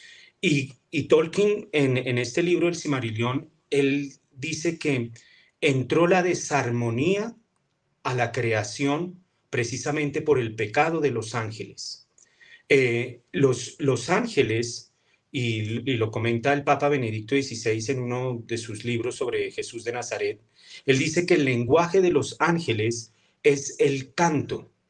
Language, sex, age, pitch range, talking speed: Spanish, male, 40-59, 120-150 Hz, 135 wpm